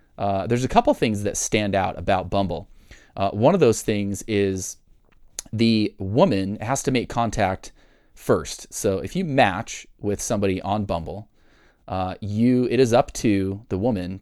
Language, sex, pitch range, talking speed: English, male, 95-115 Hz, 165 wpm